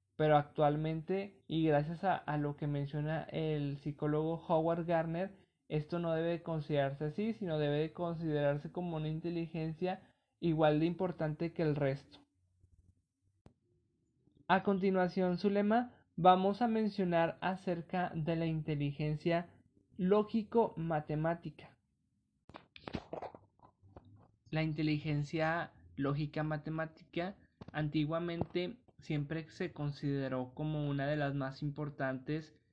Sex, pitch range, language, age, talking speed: male, 145-170 Hz, Spanish, 20-39, 100 wpm